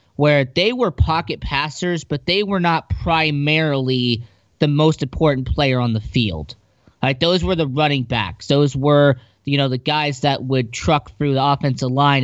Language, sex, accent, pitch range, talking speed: English, male, American, 125-160 Hz, 180 wpm